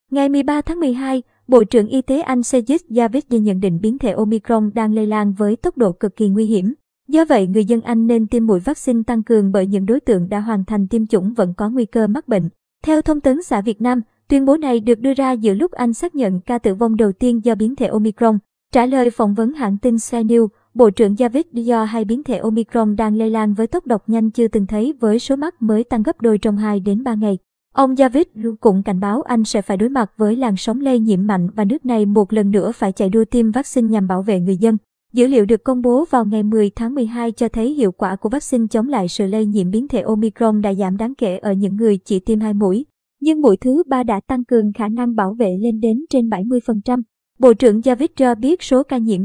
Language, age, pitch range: Vietnamese, 20-39, 215-250 Hz